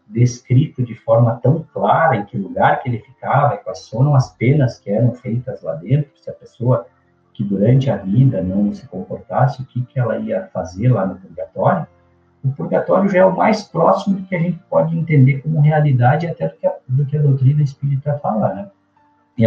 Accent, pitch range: Brazilian, 115-145 Hz